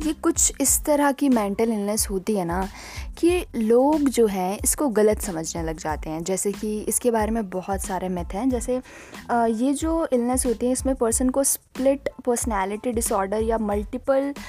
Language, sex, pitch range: Hindi, female, 205-260 Hz